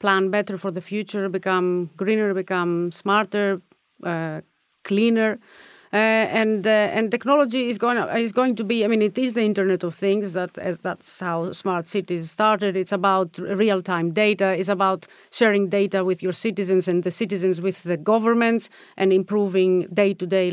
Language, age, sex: English, 30-49, female